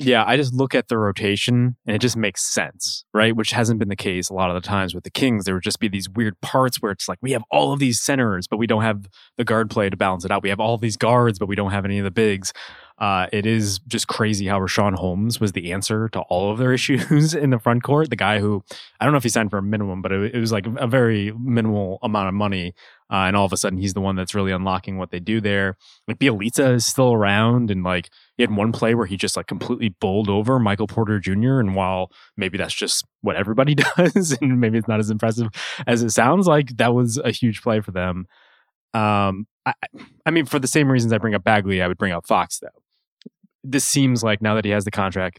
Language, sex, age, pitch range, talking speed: English, male, 20-39, 100-120 Hz, 260 wpm